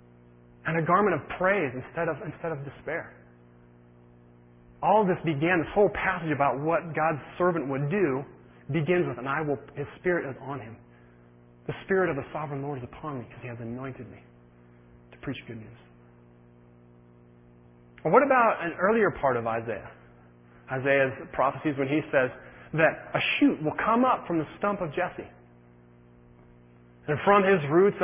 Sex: male